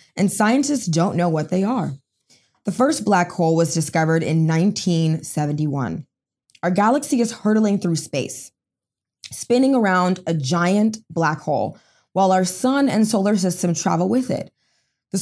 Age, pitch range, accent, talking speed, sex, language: 20-39, 155-210 Hz, American, 145 wpm, female, English